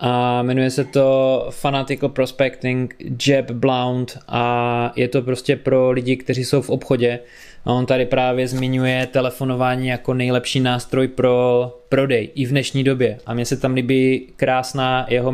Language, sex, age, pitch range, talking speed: Czech, male, 20-39, 120-135 Hz, 155 wpm